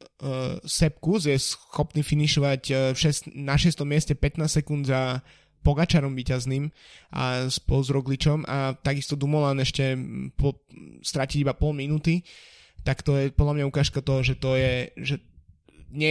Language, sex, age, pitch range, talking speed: Slovak, male, 20-39, 125-140 Hz, 140 wpm